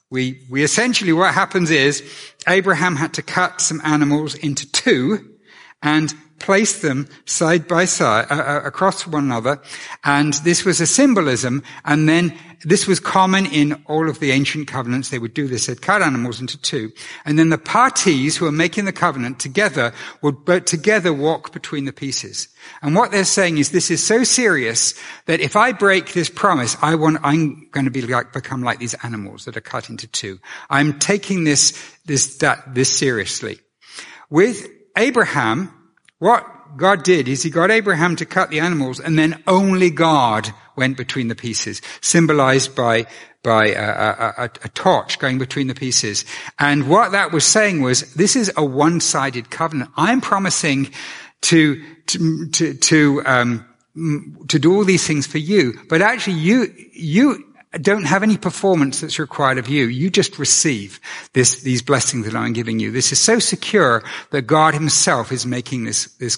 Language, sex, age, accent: English, male, 60-79, British